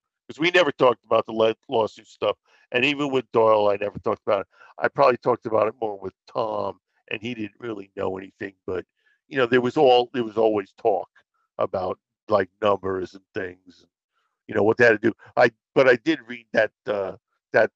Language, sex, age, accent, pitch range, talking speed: English, male, 50-69, American, 105-125 Hz, 210 wpm